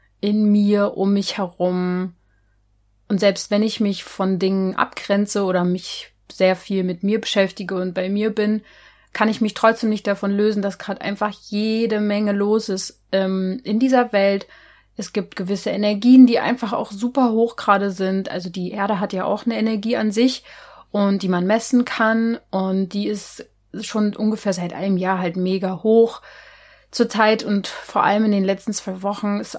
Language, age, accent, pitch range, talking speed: German, 30-49, German, 190-220 Hz, 180 wpm